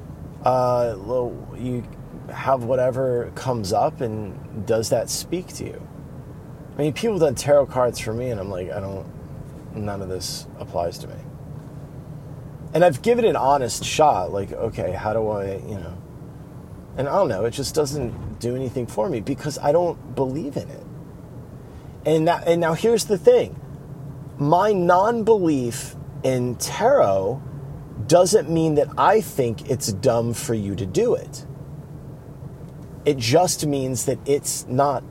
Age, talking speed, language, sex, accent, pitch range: 30-49, 155 wpm, English, male, American, 120-150 Hz